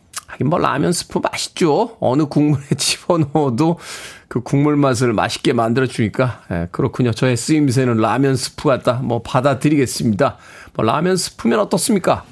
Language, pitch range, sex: Korean, 110-170 Hz, male